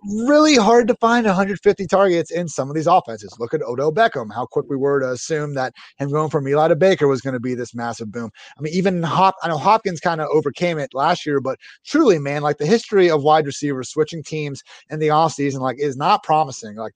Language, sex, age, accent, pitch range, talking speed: English, male, 30-49, American, 140-180 Hz, 235 wpm